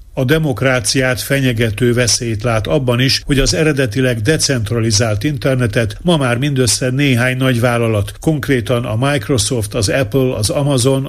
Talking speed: 135 wpm